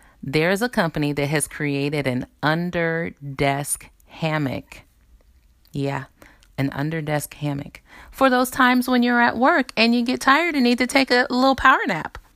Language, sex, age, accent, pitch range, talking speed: English, female, 30-49, American, 140-195 Hz, 170 wpm